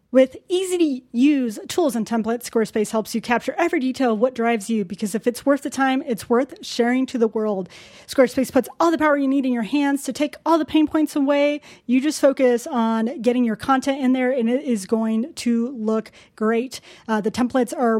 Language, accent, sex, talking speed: English, American, female, 215 wpm